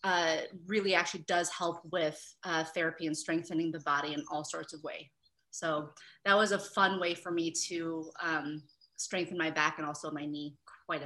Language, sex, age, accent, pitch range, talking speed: English, female, 30-49, American, 165-195 Hz, 190 wpm